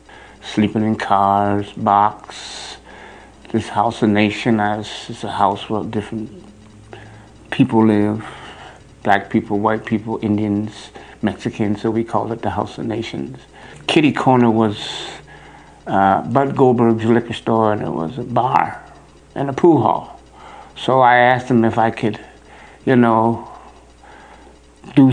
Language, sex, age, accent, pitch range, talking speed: English, male, 60-79, American, 105-115 Hz, 135 wpm